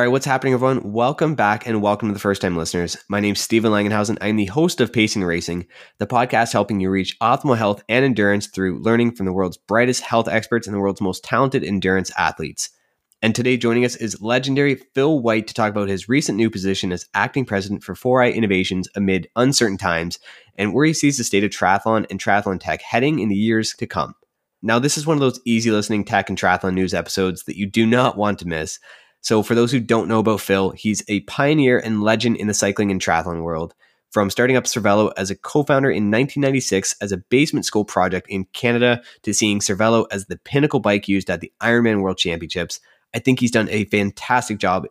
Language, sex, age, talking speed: English, male, 20-39, 220 wpm